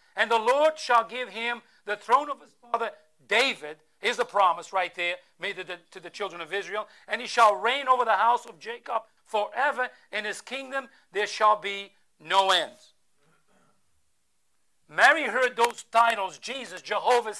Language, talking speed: English, 165 wpm